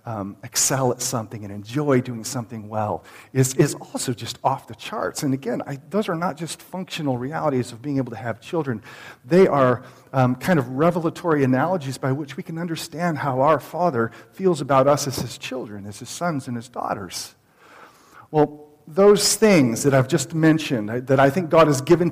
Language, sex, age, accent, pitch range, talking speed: English, male, 40-59, American, 120-150 Hz, 195 wpm